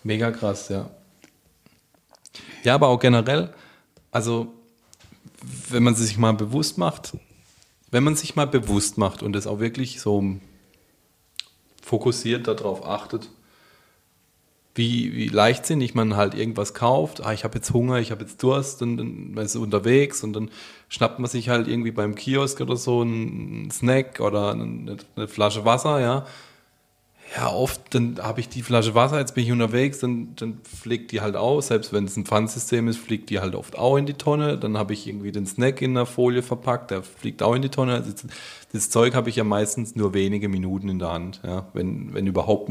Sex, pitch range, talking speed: male, 105-125 Hz, 185 wpm